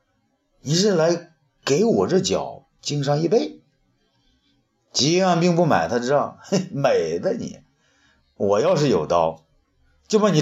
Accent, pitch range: native, 125-190 Hz